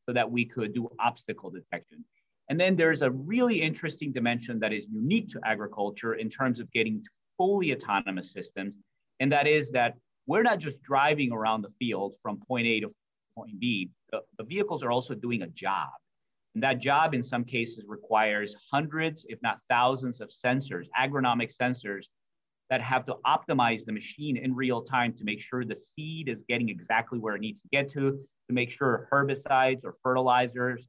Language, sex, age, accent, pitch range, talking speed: English, male, 30-49, American, 115-140 Hz, 180 wpm